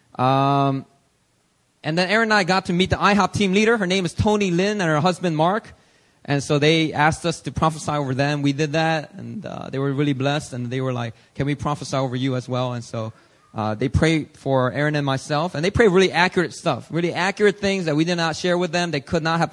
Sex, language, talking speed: male, English, 245 wpm